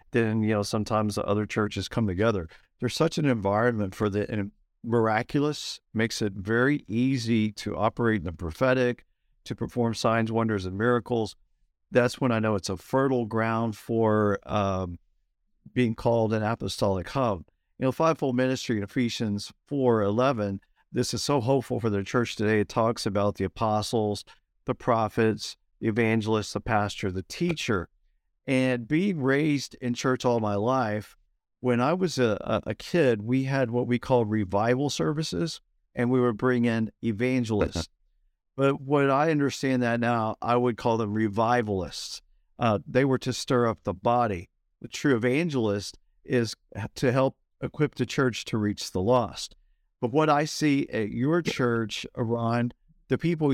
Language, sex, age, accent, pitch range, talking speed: English, male, 50-69, American, 105-125 Hz, 160 wpm